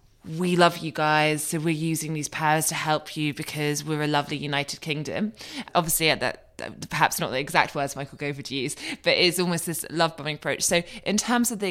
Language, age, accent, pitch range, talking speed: English, 20-39, British, 145-165 Hz, 220 wpm